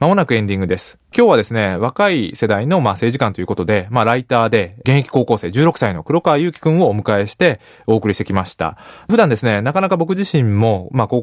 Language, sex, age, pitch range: Japanese, male, 20-39, 105-160 Hz